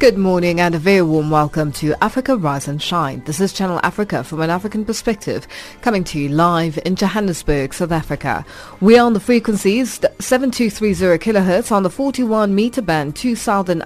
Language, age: English, 30-49